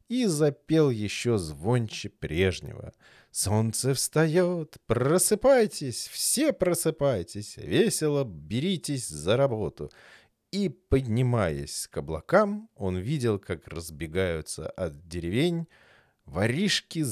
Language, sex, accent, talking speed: Russian, male, native, 90 wpm